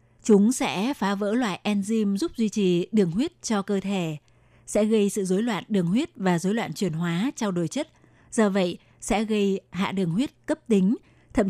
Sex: female